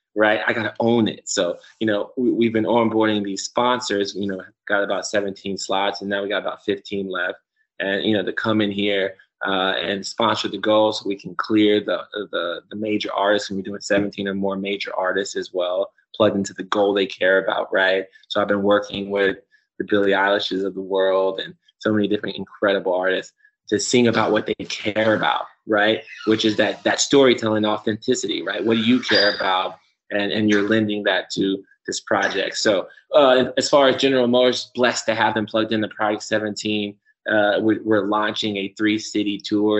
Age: 20-39